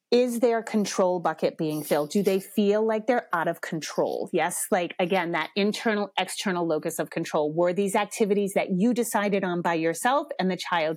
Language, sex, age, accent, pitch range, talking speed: English, female, 30-49, American, 180-230 Hz, 190 wpm